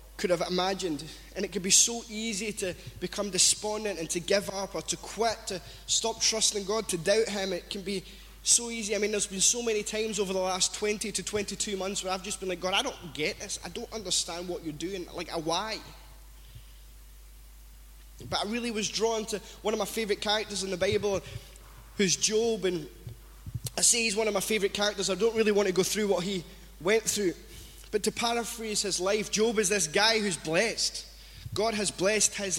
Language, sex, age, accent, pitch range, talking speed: English, male, 20-39, British, 185-220 Hz, 210 wpm